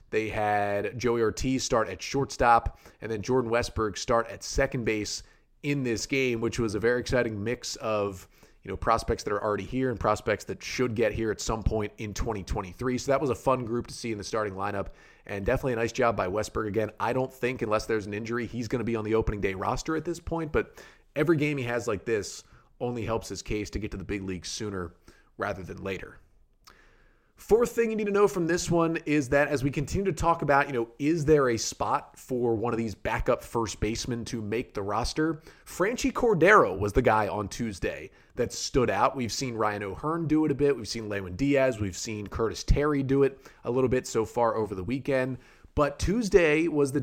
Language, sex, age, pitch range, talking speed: English, male, 30-49, 105-135 Hz, 225 wpm